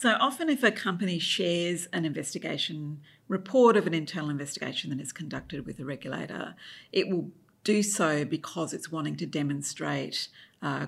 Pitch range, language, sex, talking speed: 145-185 Hz, English, female, 160 wpm